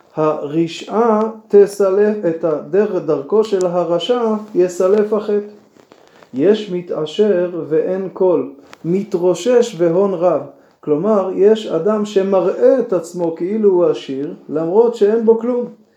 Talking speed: 110 wpm